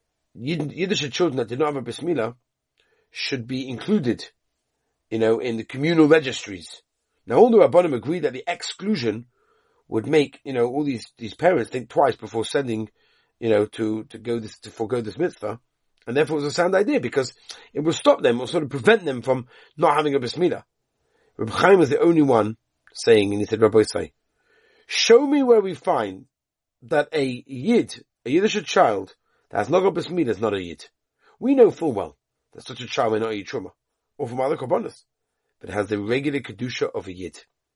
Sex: male